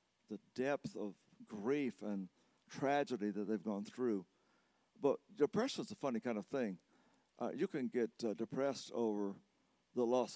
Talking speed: 155 wpm